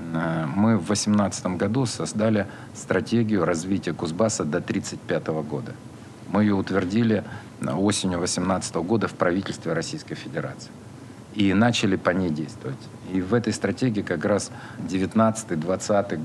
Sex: male